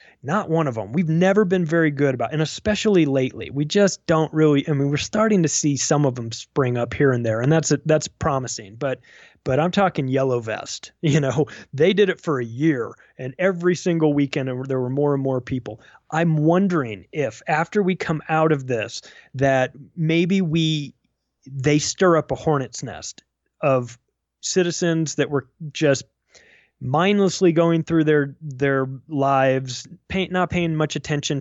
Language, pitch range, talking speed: English, 135-165 Hz, 180 wpm